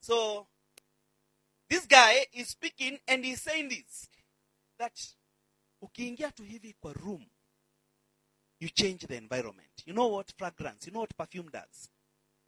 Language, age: English, 40-59